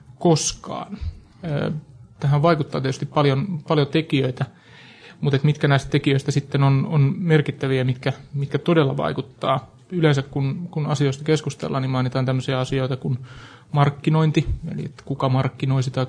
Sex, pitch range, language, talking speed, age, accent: male, 130-145 Hz, Finnish, 135 wpm, 30-49, native